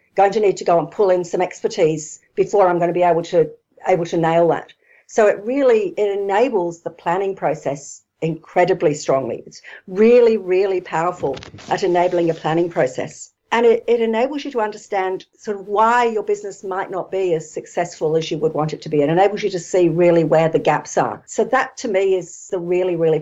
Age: 50-69